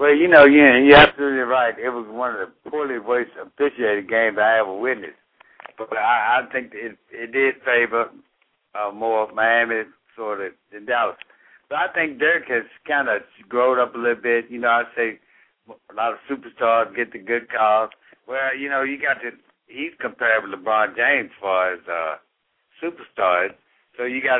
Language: English